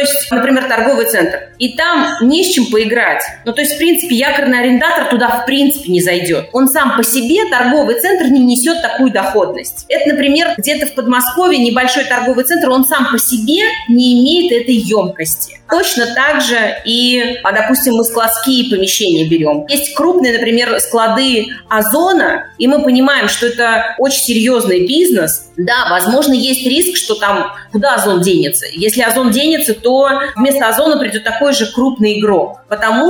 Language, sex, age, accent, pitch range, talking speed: Russian, female, 30-49, native, 225-290 Hz, 170 wpm